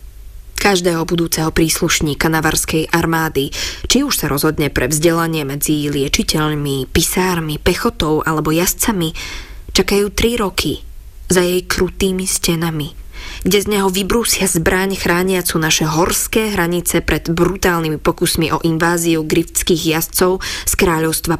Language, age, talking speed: Slovak, 20-39, 120 wpm